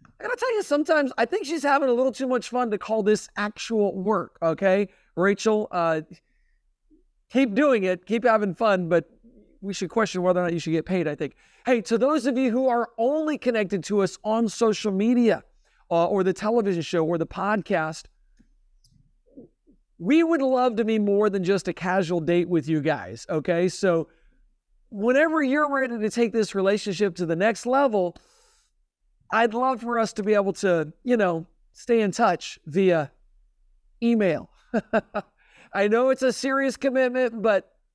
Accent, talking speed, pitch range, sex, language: American, 180 wpm, 170-235 Hz, male, English